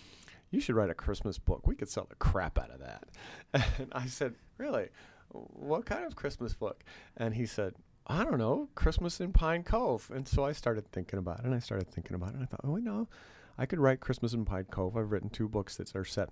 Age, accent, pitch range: 40-59, American, 95-125 Hz